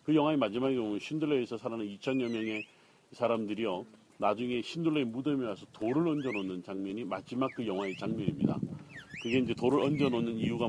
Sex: male